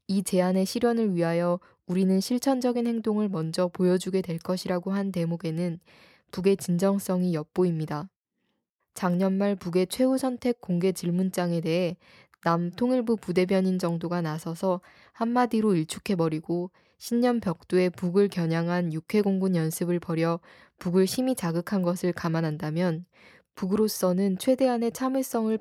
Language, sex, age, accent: Korean, female, 20-39, native